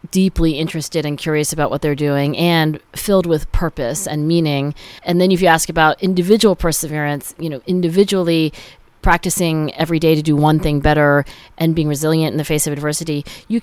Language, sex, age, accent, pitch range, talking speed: English, female, 40-59, American, 150-180 Hz, 185 wpm